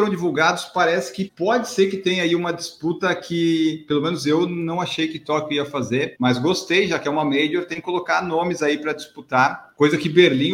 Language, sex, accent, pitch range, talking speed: Portuguese, male, Brazilian, 130-180 Hz, 215 wpm